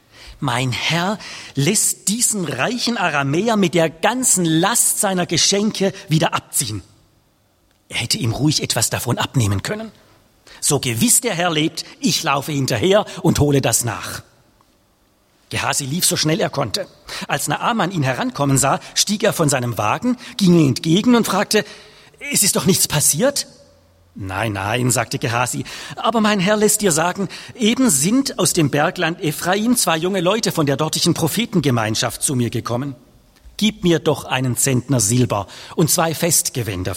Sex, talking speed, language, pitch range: male, 155 wpm, English, 120-185 Hz